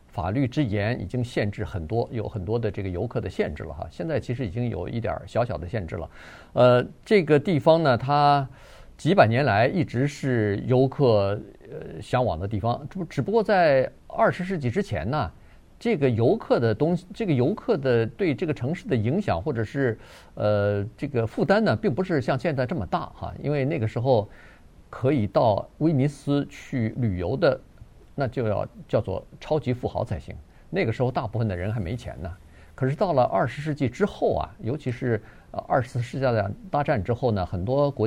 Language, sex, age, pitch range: Chinese, male, 50-69, 110-140 Hz